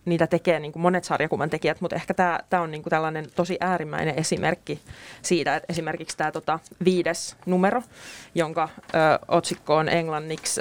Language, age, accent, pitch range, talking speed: Finnish, 30-49, native, 170-195 Hz, 160 wpm